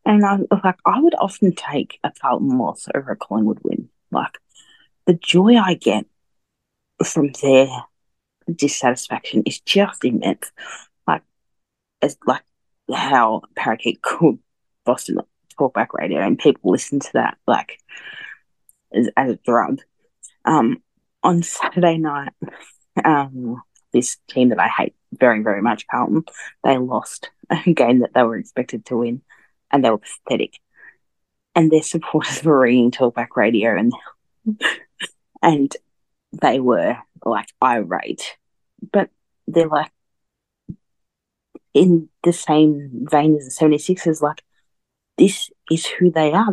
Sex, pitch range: female, 140-200 Hz